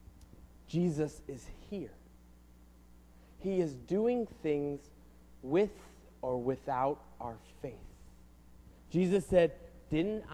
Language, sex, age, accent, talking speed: English, male, 30-49, American, 85 wpm